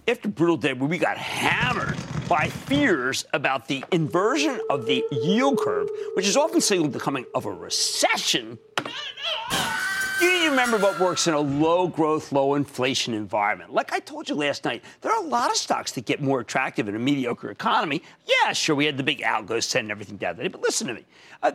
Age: 50-69